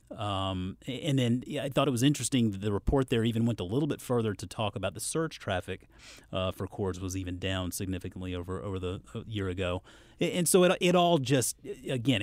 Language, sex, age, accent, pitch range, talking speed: English, male, 30-49, American, 100-125 Hz, 215 wpm